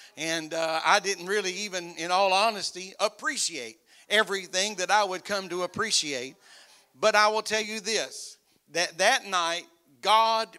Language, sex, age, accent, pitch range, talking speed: English, male, 50-69, American, 180-215 Hz, 155 wpm